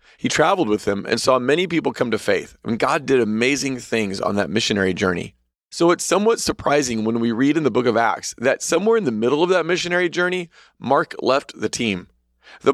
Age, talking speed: 30-49, 215 wpm